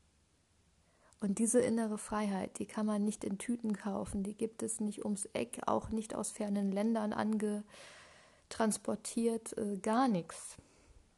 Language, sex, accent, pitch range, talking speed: German, female, German, 190-215 Hz, 140 wpm